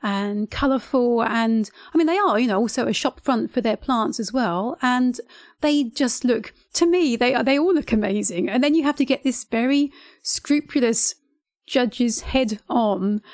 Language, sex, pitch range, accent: English, female, 225-275 Hz, British